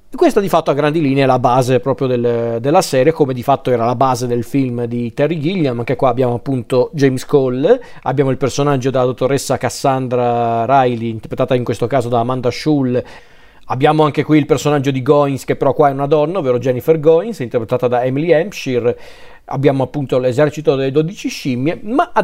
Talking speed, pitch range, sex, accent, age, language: 190 wpm, 125-155 Hz, male, native, 40-59, Italian